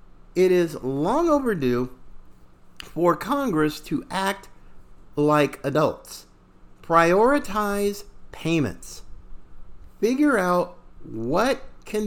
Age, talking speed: 50-69, 80 wpm